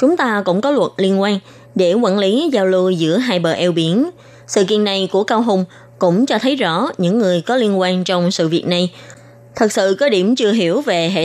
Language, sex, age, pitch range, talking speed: Vietnamese, female, 20-39, 175-230 Hz, 235 wpm